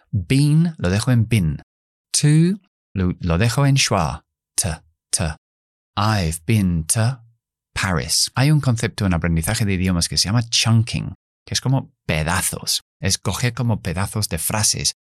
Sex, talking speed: male, 145 wpm